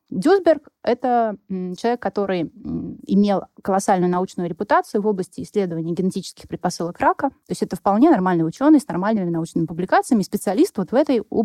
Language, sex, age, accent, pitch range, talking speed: Russian, female, 20-39, native, 180-245 Hz, 150 wpm